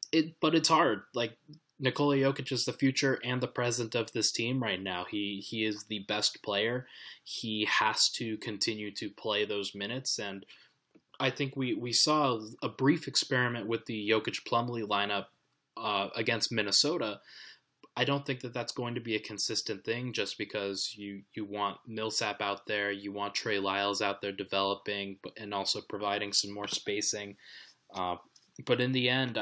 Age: 20-39